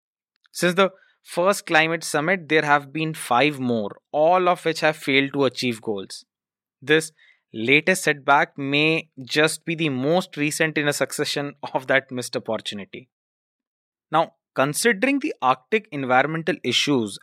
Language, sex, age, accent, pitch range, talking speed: English, male, 20-39, Indian, 125-160 Hz, 140 wpm